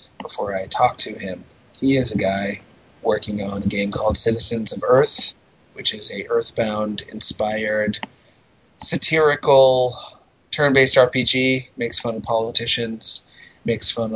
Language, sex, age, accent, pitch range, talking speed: English, male, 30-49, American, 105-120 Hz, 125 wpm